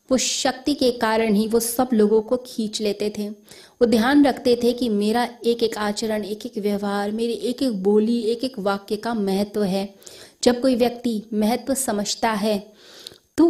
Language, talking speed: Hindi, 190 wpm